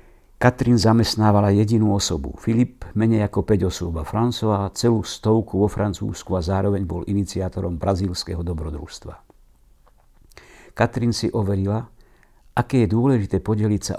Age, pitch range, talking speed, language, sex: 60-79, 90-110 Hz, 125 wpm, Slovak, male